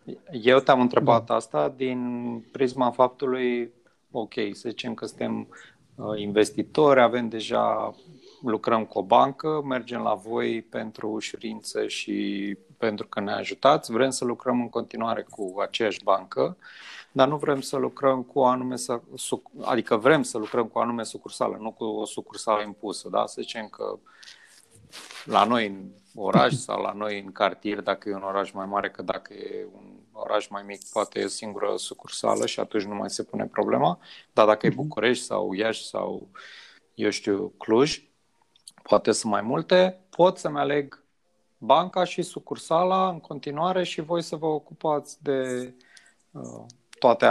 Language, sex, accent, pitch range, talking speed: Romanian, male, native, 105-145 Hz, 155 wpm